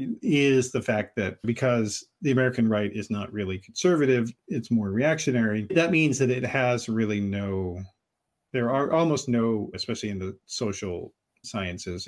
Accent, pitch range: American, 105-135 Hz